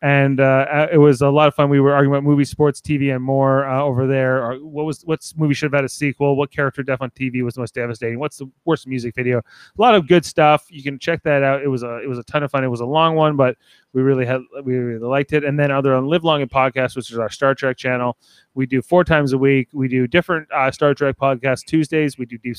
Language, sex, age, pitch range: English, male, 30-49, 125-145 Hz